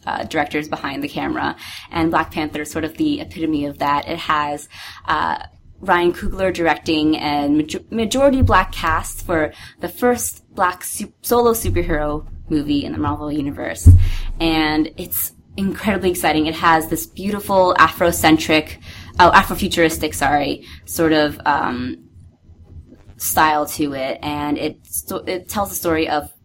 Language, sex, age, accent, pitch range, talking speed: English, female, 20-39, American, 145-180 Hz, 145 wpm